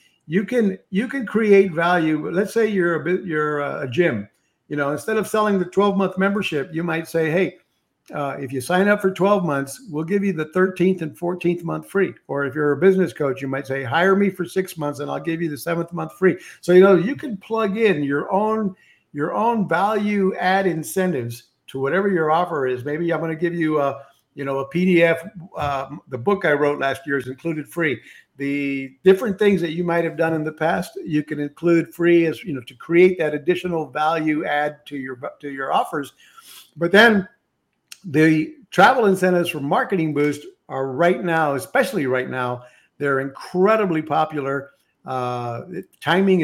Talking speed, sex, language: 200 wpm, male, English